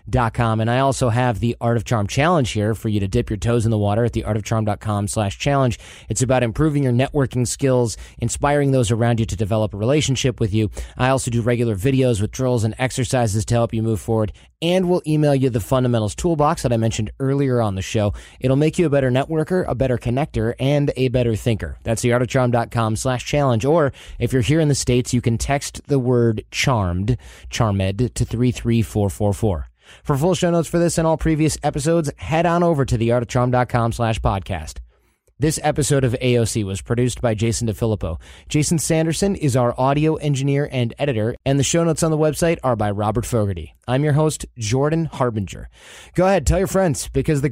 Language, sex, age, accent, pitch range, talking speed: English, male, 20-39, American, 110-145 Hz, 200 wpm